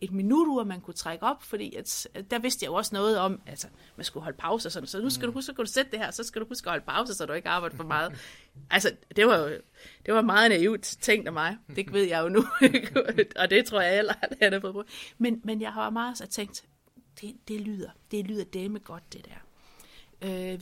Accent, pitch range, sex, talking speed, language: native, 180-240 Hz, female, 255 wpm, Danish